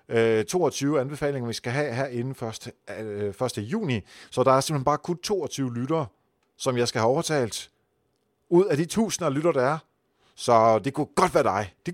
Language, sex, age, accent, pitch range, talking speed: Danish, male, 40-59, native, 120-170 Hz, 185 wpm